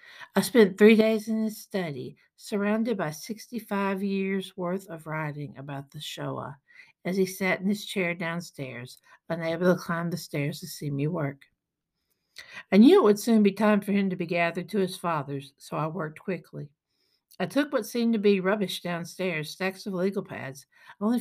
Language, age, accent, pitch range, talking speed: English, 60-79, American, 170-220 Hz, 185 wpm